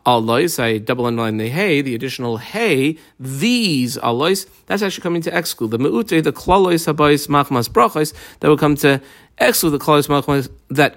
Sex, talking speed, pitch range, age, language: male, 170 wpm, 120-160 Hz, 40-59, English